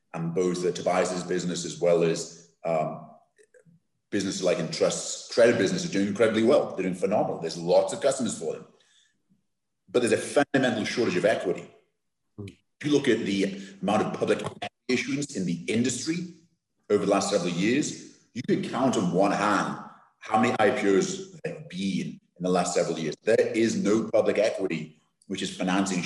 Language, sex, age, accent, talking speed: English, male, 30-49, British, 170 wpm